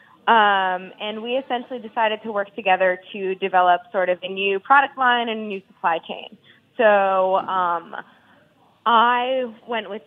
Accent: American